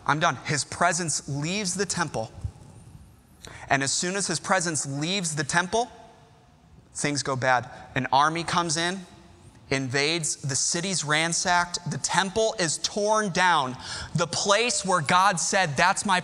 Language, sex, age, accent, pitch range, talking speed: English, male, 20-39, American, 155-225 Hz, 145 wpm